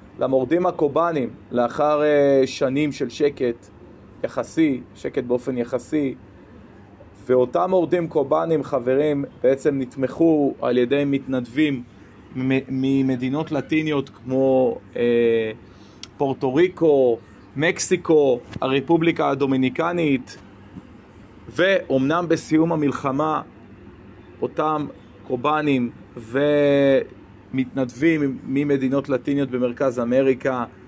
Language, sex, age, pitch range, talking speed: Hebrew, male, 30-49, 110-145 Hz, 75 wpm